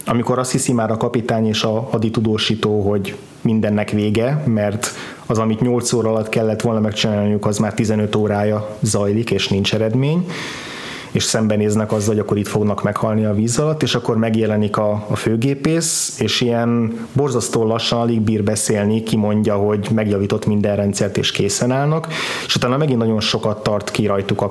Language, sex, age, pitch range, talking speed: Hungarian, male, 20-39, 105-125 Hz, 175 wpm